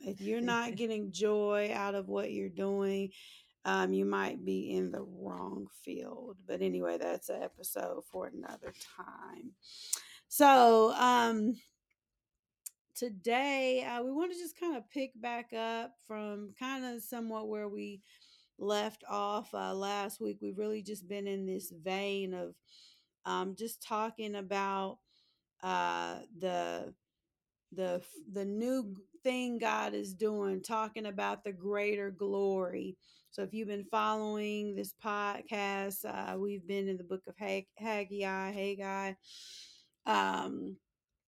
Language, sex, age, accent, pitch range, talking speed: English, female, 30-49, American, 185-215 Hz, 135 wpm